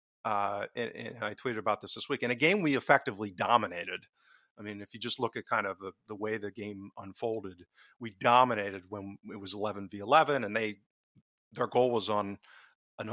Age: 40-59